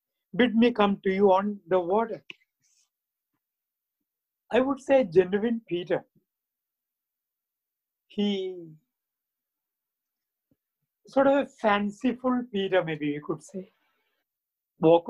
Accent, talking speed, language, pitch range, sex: Indian, 95 wpm, English, 190-250 Hz, male